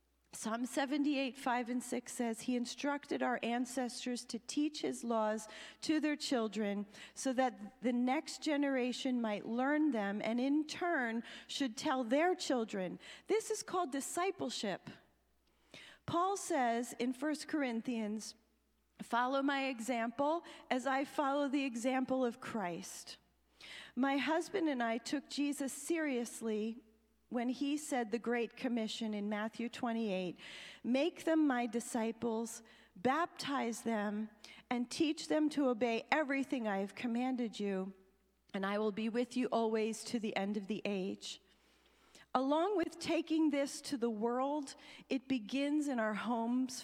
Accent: American